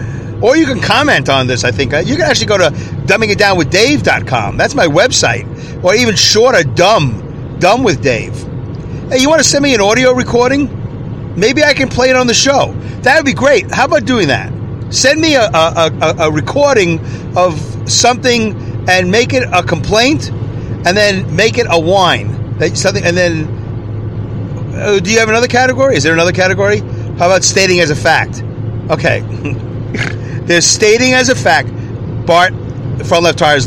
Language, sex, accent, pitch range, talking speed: English, male, American, 120-170 Hz, 175 wpm